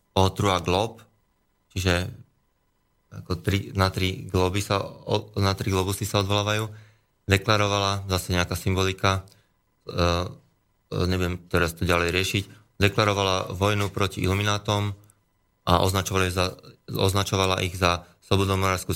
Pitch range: 90-95 Hz